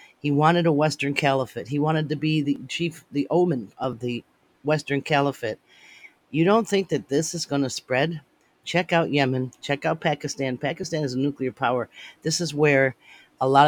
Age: 40-59